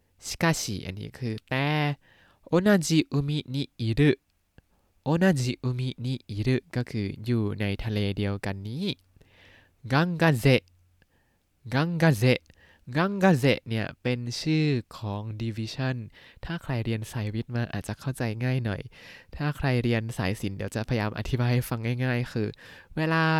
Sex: male